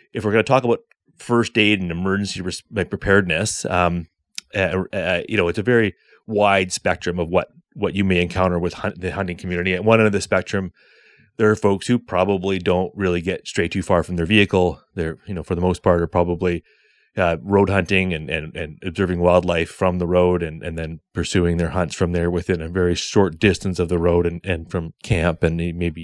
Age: 30-49